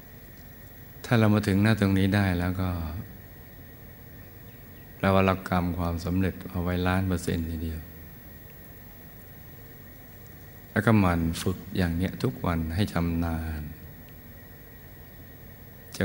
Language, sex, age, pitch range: Thai, male, 60-79, 85-100 Hz